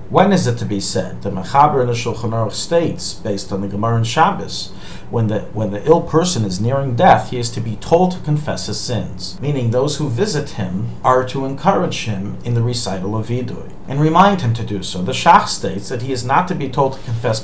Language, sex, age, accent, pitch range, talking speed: English, male, 40-59, American, 110-140 Hz, 235 wpm